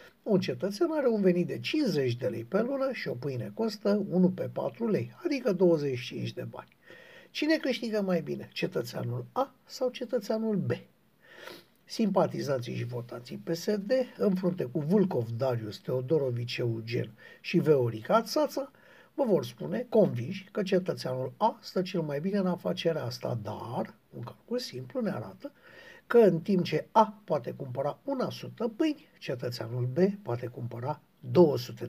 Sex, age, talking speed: male, 60-79, 150 wpm